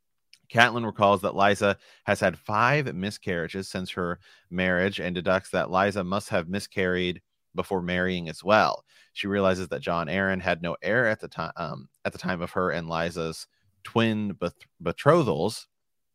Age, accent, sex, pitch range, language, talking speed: 30-49, American, male, 90-110 Hz, English, 155 wpm